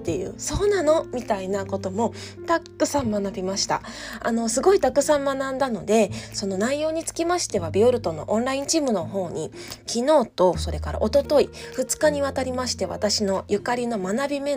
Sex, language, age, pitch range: female, Japanese, 20-39, 190-265 Hz